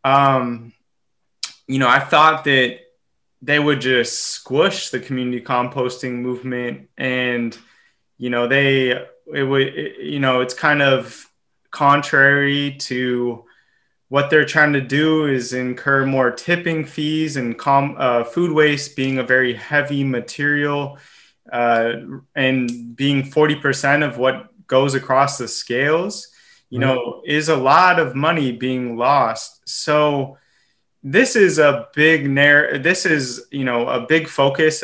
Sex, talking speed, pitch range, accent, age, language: male, 140 wpm, 125-145 Hz, American, 20-39, English